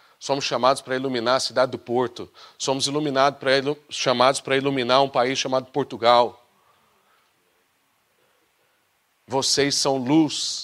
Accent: Brazilian